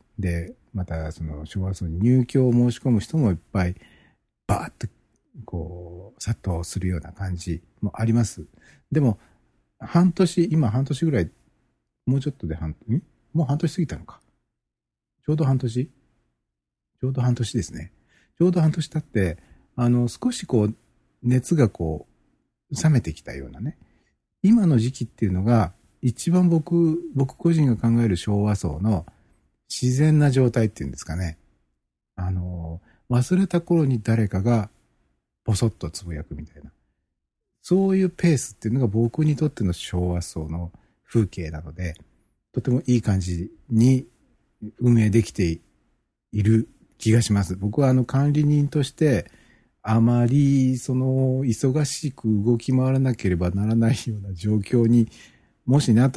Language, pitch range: Japanese, 90-130 Hz